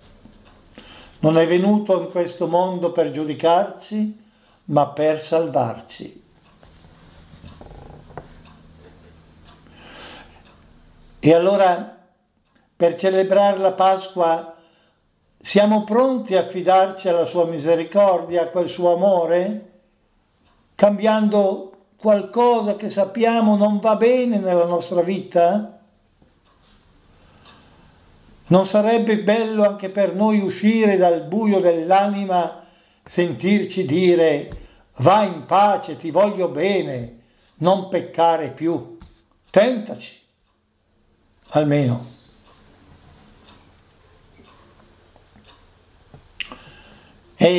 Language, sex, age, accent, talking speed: Italian, male, 60-79, native, 80 wpm